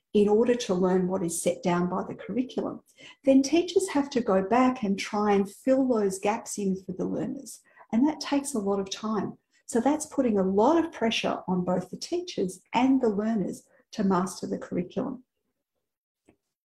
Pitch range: 190-265 Hz